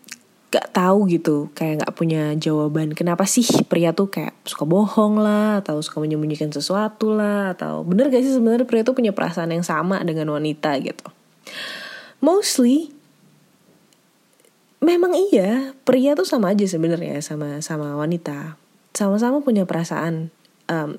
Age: 20-39